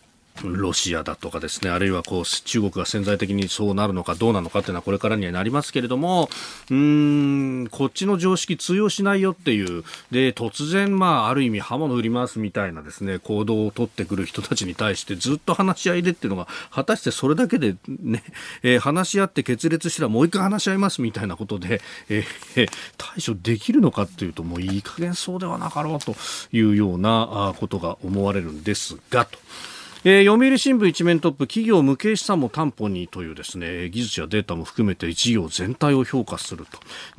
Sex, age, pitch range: male, 40-59, 100-140 Hz